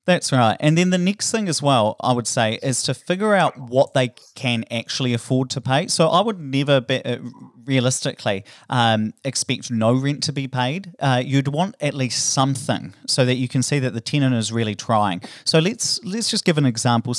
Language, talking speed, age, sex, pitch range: English, 205 wpm, 30-49, male, 110-145 Hz